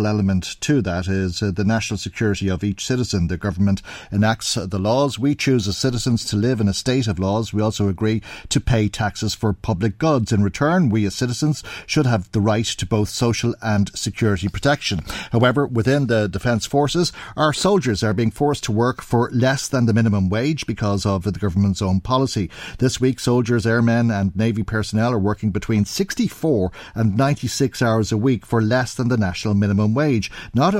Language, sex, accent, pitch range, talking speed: English, male, Irish, 100-125 Hz, 190 wpm